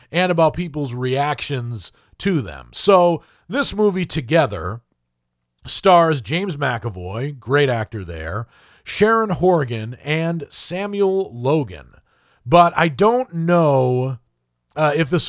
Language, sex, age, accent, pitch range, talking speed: English, male, 40-59, American, 125-185 Hz, 110 wpm